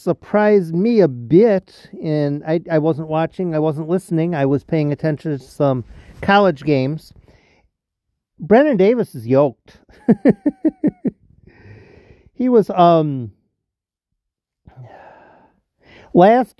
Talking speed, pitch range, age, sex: 100 wpm, 135-190 Hz, 50-69, male